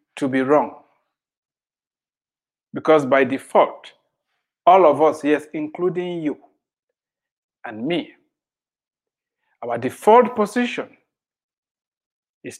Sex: male